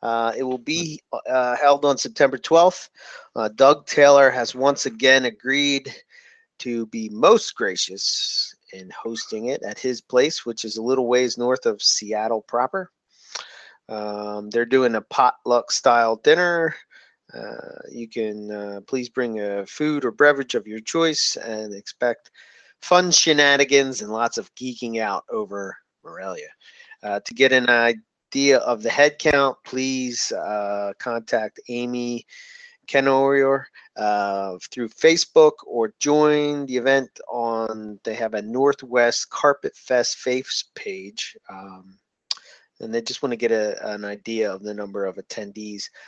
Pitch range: 110-140 Hz